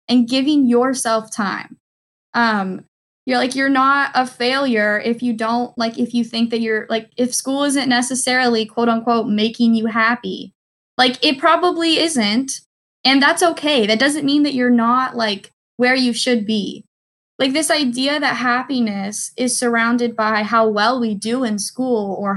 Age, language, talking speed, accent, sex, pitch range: 10-29, English, 170 wpm, American, female, 210-255 Hz